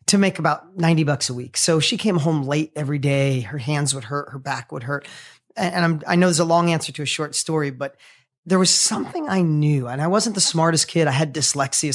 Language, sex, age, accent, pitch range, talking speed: English, male, 30-49, American, 145-175 Hz, 245 wpm